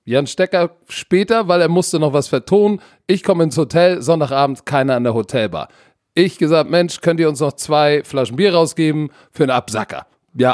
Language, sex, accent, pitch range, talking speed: German, male, German, 140-200 Hz, 190 wpm